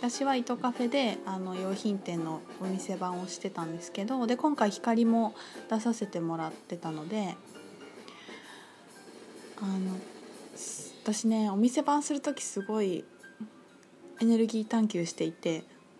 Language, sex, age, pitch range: Japanese, female, 20-39, 190-255 Hz